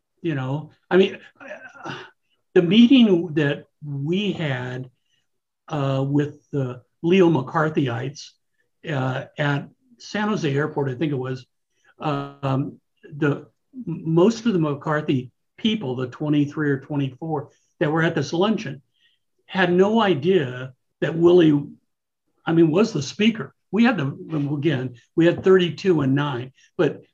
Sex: male